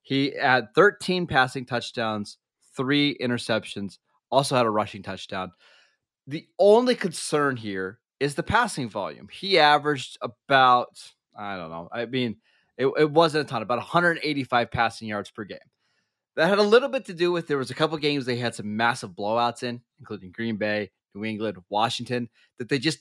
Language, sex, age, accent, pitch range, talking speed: English, male, 20-39, American, 115-150 Hz, 175 wpm